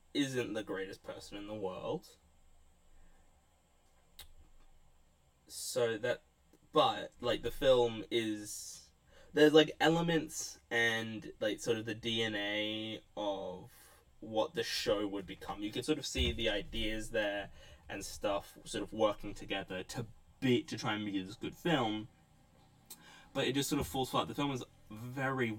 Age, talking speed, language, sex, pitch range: 10-29, 150 wpm, English, male, 90-125 Hz